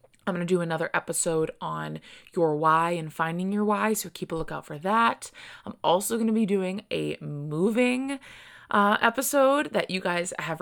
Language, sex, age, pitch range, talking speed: English, female, 20-39, 155-190 Hz, 185 wpm